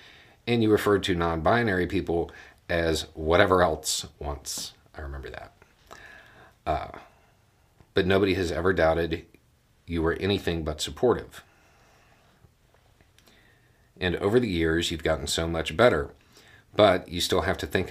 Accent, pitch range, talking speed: American, 80-95 Hz, 130 wpm